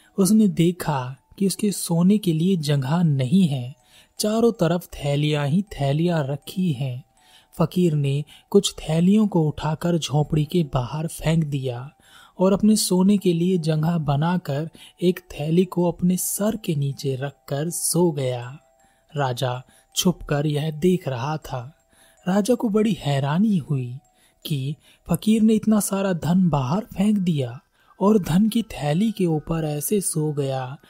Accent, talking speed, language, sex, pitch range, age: native, 145 wpm, Hindi, male, 145-185 Hz, 30-49